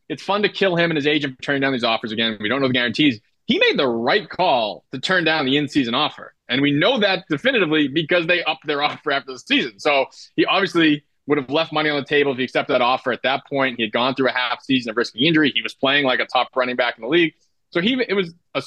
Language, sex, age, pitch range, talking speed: English, male, 20-39, 130-175 Hz, 280 wpm